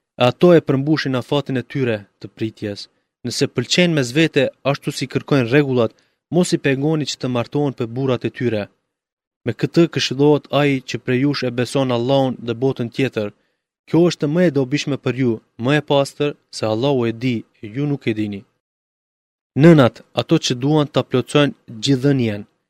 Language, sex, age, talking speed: Greek, male, 30-49, 165 wpm